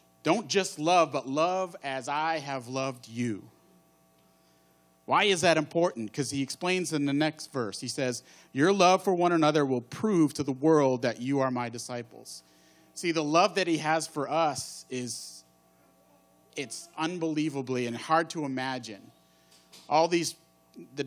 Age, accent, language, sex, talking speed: 40-59, American, English, male, 160 wpm